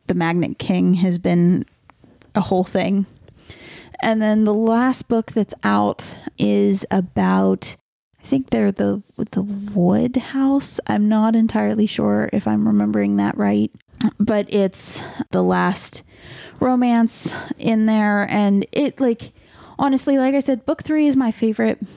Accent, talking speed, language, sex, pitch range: American, 140 wpm, English, female, 180-225 Hz